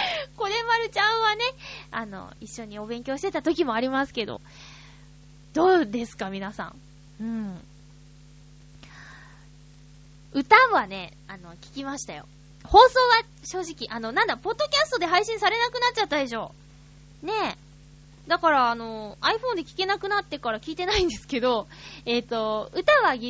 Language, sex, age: Japanese, female, 20-39